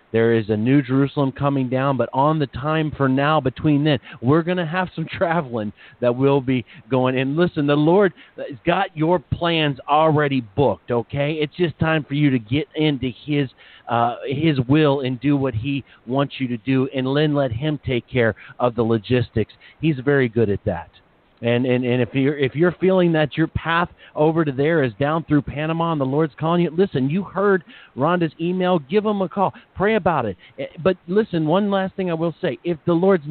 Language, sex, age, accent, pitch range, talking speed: English, male, 40-59, American, 125-160 Hz, 210 wpm